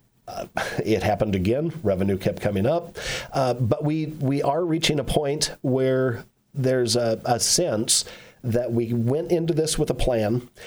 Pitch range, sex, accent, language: 115-145 Hz, male, American, English